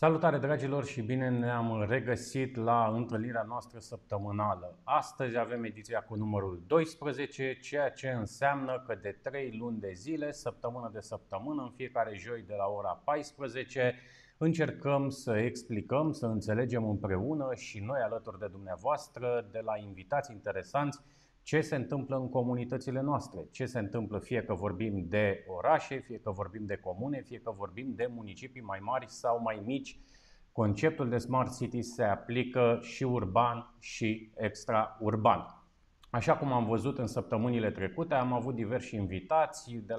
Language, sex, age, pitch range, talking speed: Romanian, male, 30-49, 110-135 Hz, 150 wpm